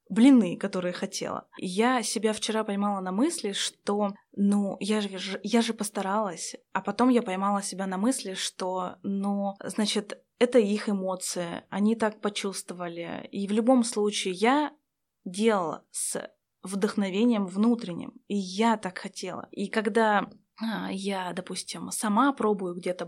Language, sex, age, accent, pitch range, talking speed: Russian, female, 20-39, native, 195-230 Hz, 140 wpm